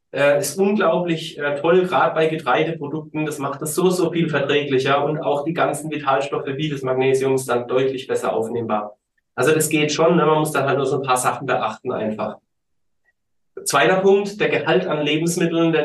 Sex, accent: male, German